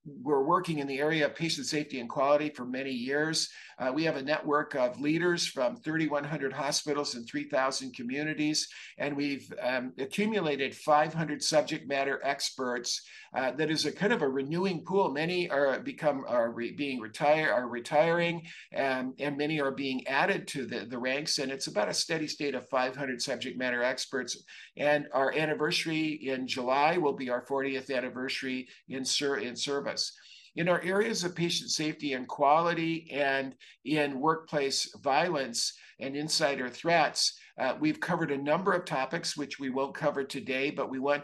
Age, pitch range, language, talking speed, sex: 50-69, 130-155 Hz, English, 170 wpm, male